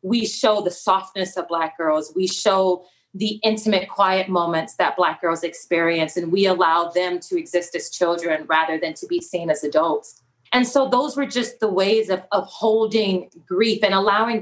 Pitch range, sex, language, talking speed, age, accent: 170-200 Hz, female, English, 185 wpm, 30-49, American